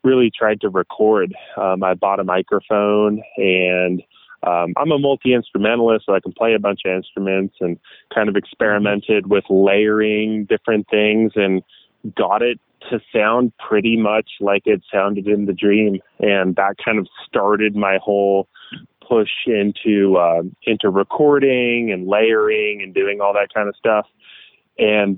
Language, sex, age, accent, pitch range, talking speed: English, male, 20-39, American, 95-115 Hz, 155 wpm